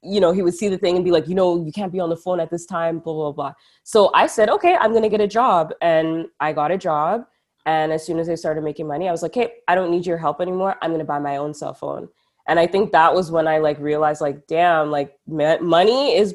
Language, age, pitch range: English, 20-39, 140-170 Hz